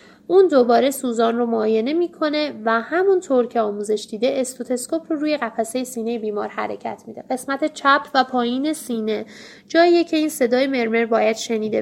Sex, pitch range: female, 230-285 Hz